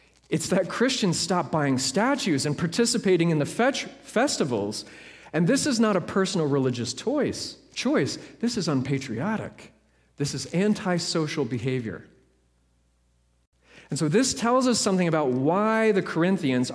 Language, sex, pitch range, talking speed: English, male, 130-215 Hz, 130 wpm